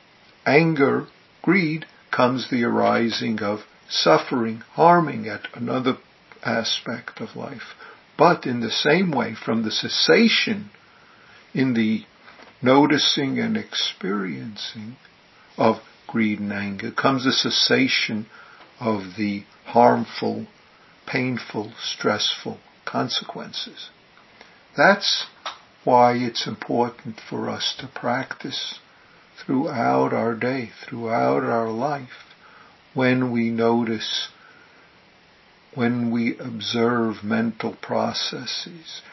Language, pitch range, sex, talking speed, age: English, 110-130 Hz, male, 95 wpm, 60-79